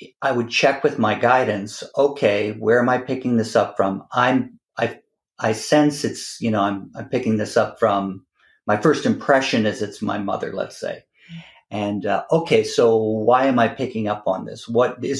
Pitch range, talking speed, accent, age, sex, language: 105-130 Hz, 195 wpm, American, 50-69, male, English